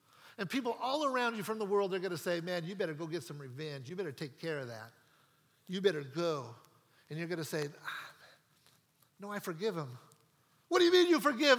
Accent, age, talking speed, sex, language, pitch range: American, 50-69, 230 wpm, male, English, 150-215 Hz